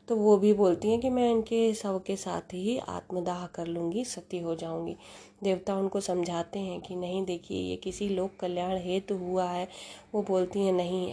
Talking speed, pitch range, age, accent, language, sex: 195 wpm, 175-195 Hz, 20-39, native, Hindi, female